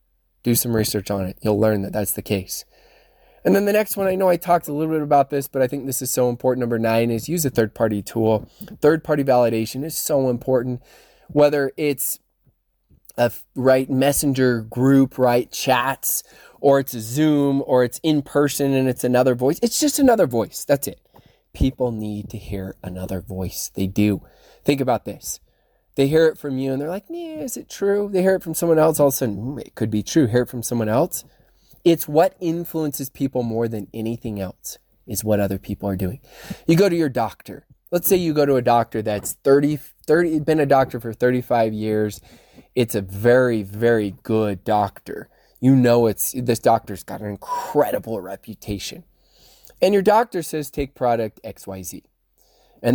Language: English